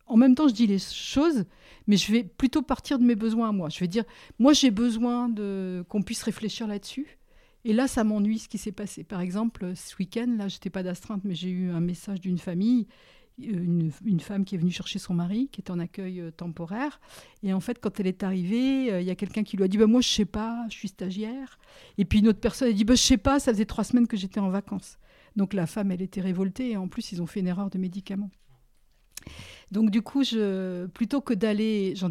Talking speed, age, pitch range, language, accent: 250 wpm, 50-69, 190-230 Hz, French, French